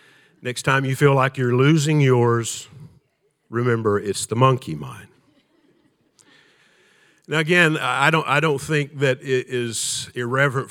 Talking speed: 135 wpm